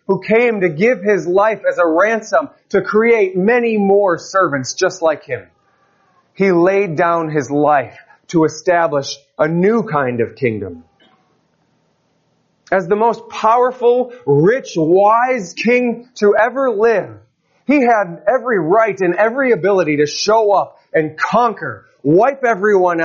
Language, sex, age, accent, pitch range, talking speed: English, male, 30-49, American, 140-205 Hz, 140 wpm